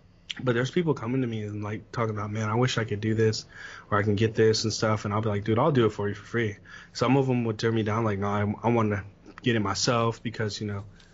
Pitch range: 105-120 Hz